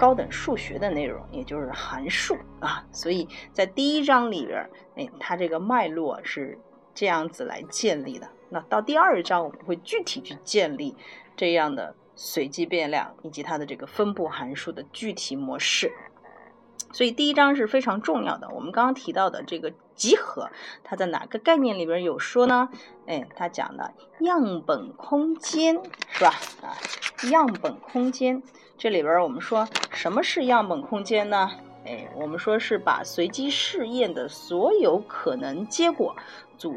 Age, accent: 30-49, native